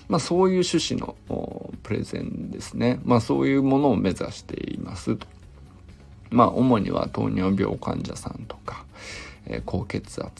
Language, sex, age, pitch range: Japanese, male, 50-69, 95-145 Hz